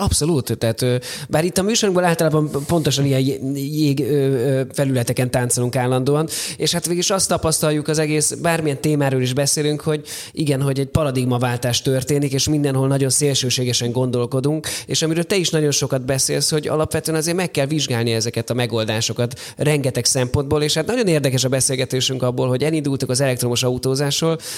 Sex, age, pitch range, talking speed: male, 20-39, 125-155 Hz, 160 wpm